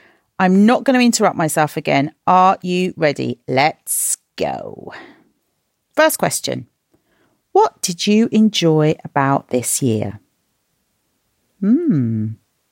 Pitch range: 155-205 Hz